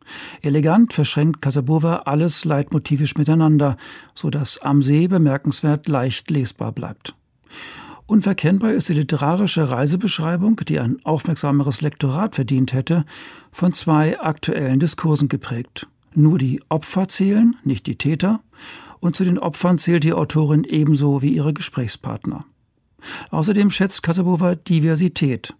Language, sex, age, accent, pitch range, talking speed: German, male, 60-79, German, 145-170 Hz, 120 wpm